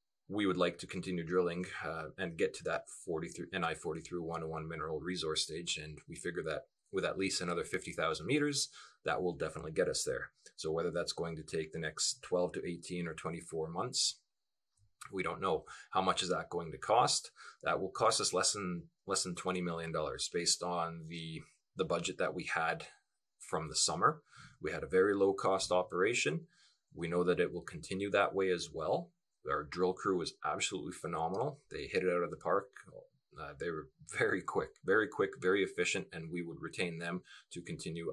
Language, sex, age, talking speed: English, male, 30-49, 195 wpm